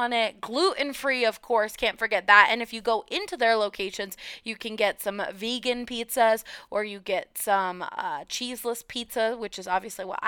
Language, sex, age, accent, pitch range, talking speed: English, female, 20-39, American, 205-255 Hz, 180 wpm